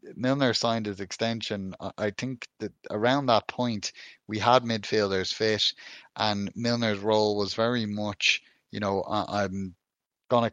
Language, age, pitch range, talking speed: English, 30-49, 100-115 Hz, 135 wpm